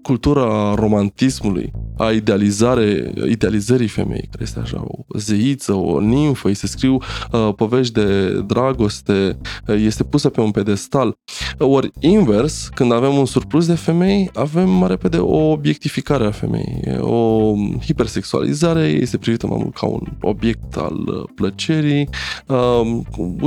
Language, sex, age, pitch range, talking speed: Romanian, male, 20-39, 100-125 Hz, 140 wpm